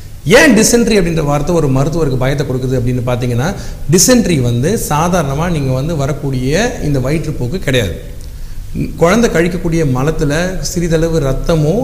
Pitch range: 130-170 Hz